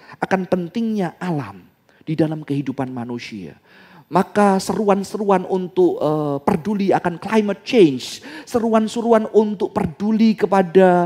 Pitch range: 170-235 Hz